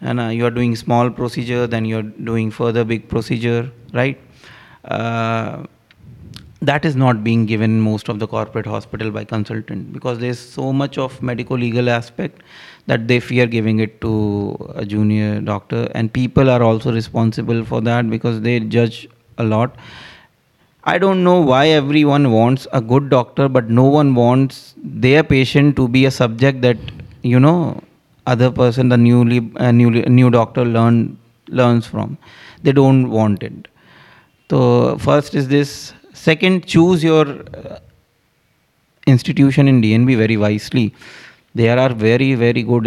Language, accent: Hindi, native